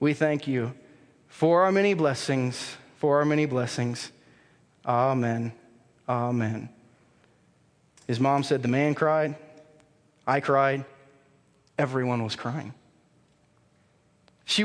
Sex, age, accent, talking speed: male, 30-49, American, 100 wpm